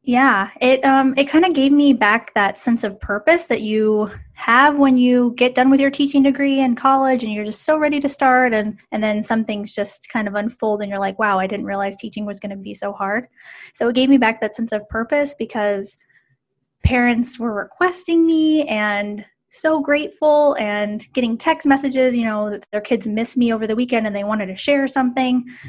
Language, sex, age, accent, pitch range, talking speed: English, female, 20-39, American, 205-250 Hz, 215 wpm